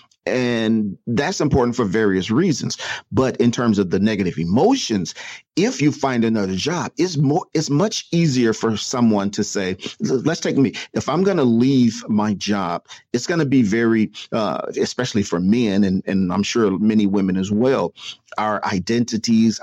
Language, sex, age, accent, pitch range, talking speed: English, male, 40-59, American, 105-125 Hz, 170 wpm